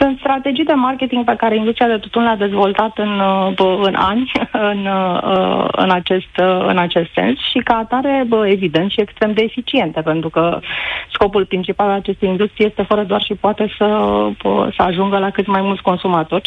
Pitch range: 185-215 Hz